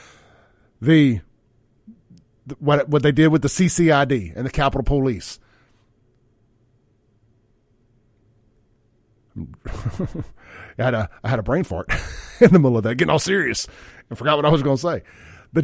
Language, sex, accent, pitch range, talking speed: English, male, American, 120-175 Hz, 140 wpm